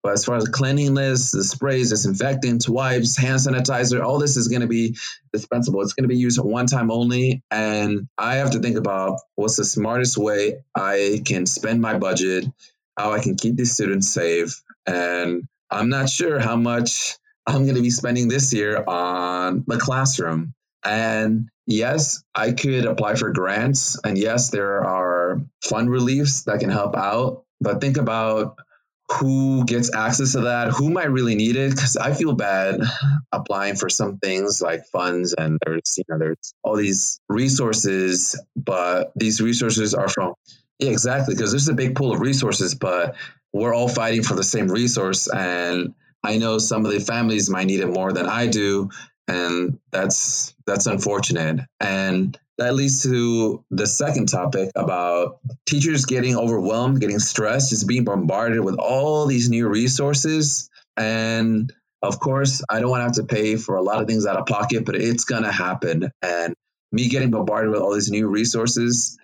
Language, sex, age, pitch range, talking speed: English, male, 30-49, 100-130 Hz, 180 wpm